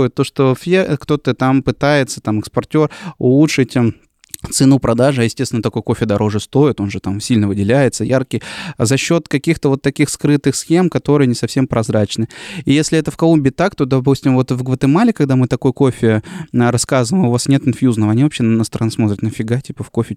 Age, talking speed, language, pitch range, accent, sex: 20-39, 180 wpm, Russian, 115-150 Hz, native, male